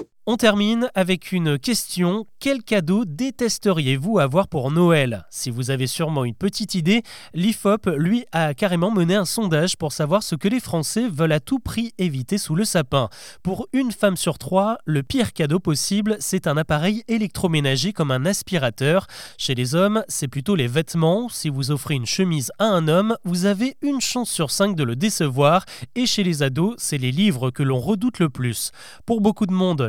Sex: male